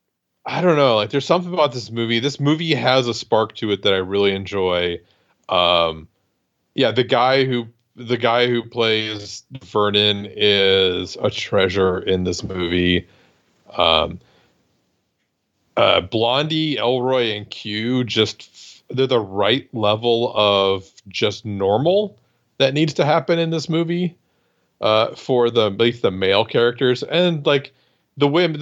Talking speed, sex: 145 wpm, male